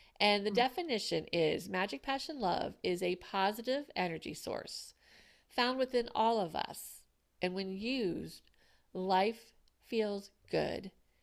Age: 40-59